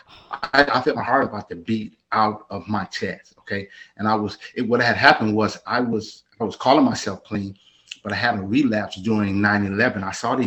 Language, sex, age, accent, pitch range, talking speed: English, male, 30-49, American, 105-140 Hz, 205 wpm